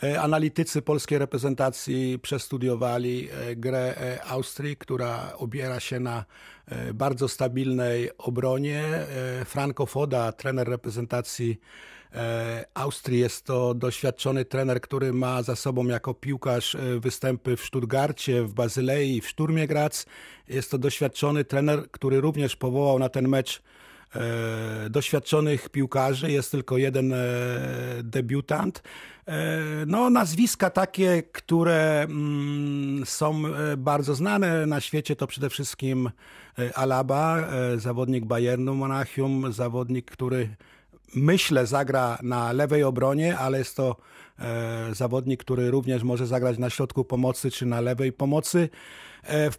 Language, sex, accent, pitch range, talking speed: Polish, male, native, 125-150 Hz, 110 wpm